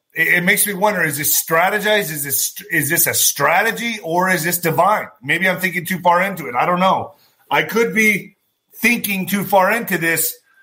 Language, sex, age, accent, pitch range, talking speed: English, male, 30-49, American, 155-220 Hz, 200 wpm